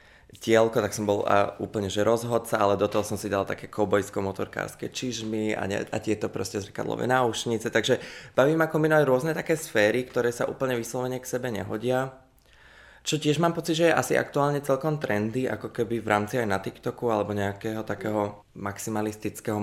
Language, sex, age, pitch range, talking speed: Czech, male, 20-39, 105-125 Hz, 180 wpm